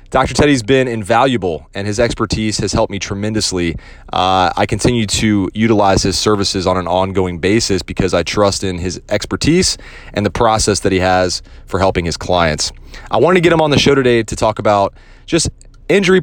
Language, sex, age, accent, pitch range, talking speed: English, male, 30-49, American, 100-130 Hz, 190 wpm